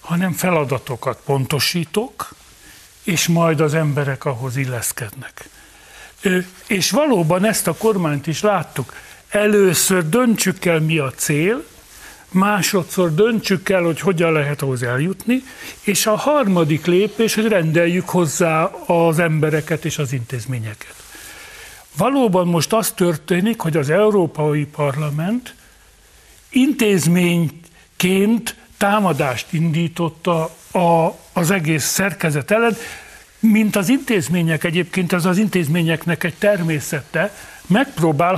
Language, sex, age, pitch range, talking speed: Hungarian, male, 60-79, 155-200 Hz, 105 wpm